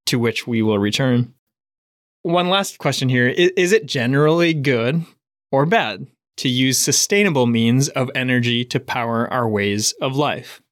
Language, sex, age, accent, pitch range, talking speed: English, male, 20-39, American, 125-150 Hz, 150 wpm